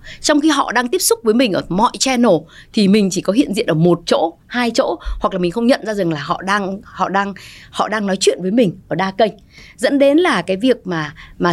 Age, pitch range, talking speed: 20-39, 175-240 Hz, 260 wpm